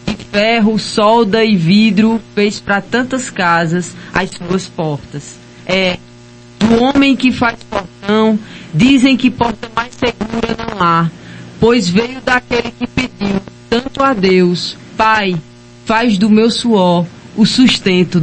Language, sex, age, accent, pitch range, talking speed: Portuguese, female, 20-39, Brazilian, 180-230 Hz, 130 wpm